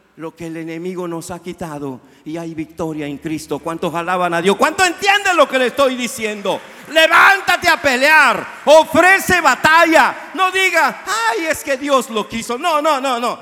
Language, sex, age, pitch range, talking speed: Spanish, male, 50-69, 150-230 Hz, 180 wpm